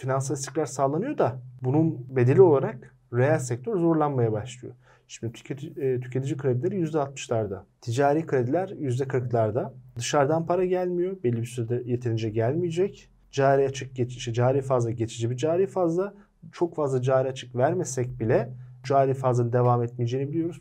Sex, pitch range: male, 120-145 Hz